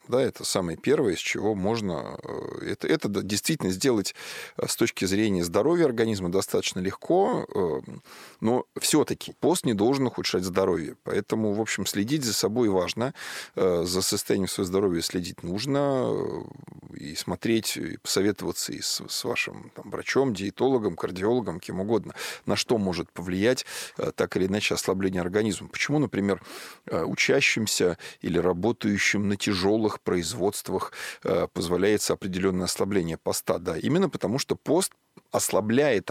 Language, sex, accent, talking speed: Russian, male, native, 130 wpm